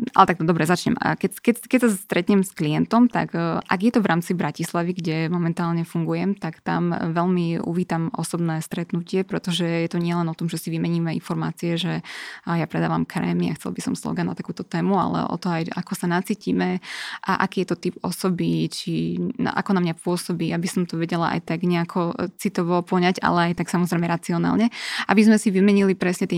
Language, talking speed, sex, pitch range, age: Slovak, 205 wpm, female, 170-190 Hz, 20-39